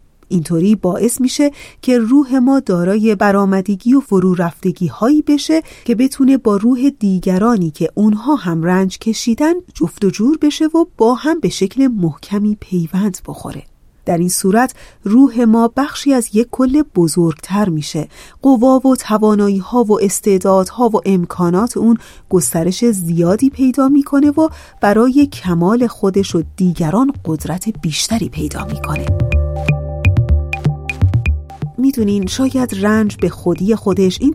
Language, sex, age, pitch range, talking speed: Persian, female, 30-49, 175-255 Hz, 135 wpm